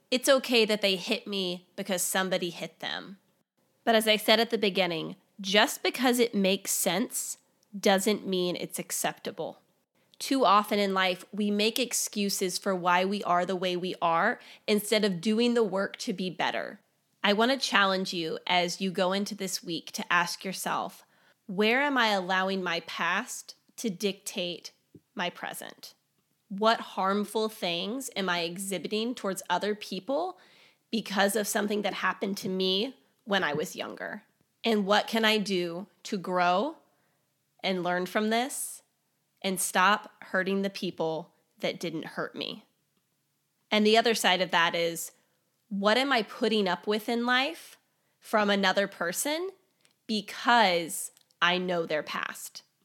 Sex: female